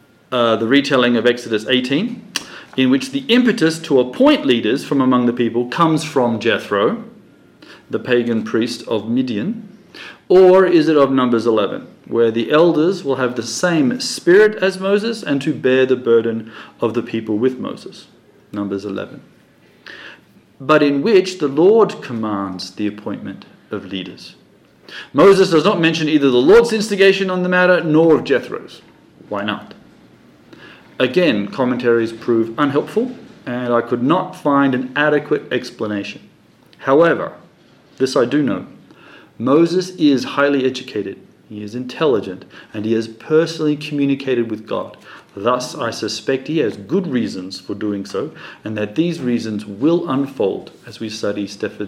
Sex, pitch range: male, 115-165 Hz